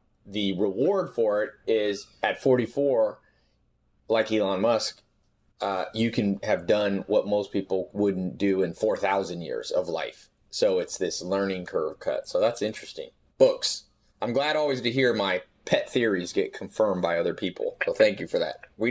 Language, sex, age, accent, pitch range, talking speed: English, male, 30-49, American, 95-155 Hz, 170 wpm